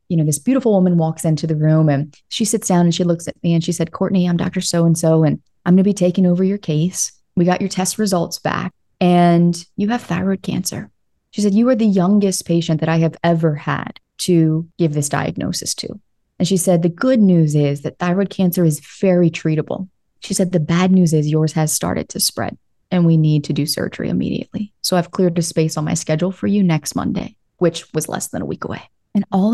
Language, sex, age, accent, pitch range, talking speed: English, female, 30-49, American, 160-190 Hz, 235 wpm